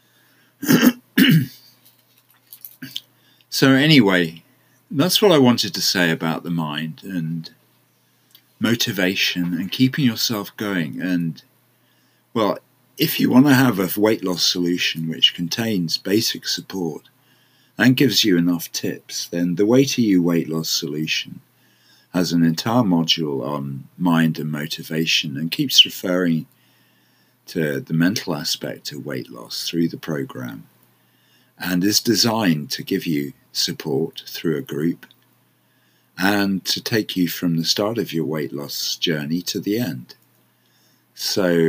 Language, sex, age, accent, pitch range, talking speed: English, male, 50-69, British, 80-120 Hz, 130 wpm